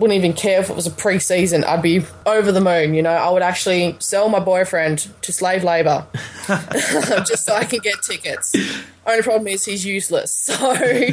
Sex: female